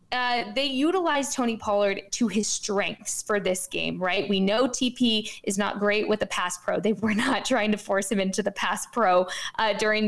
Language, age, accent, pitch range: English, 20-39, American, 210-280 Hz